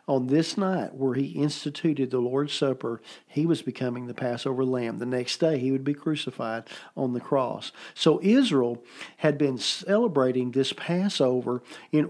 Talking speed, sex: 165 wpm, male